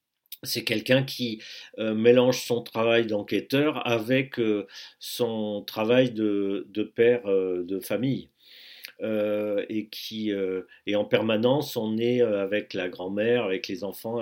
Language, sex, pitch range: French, male, 110-145 Hz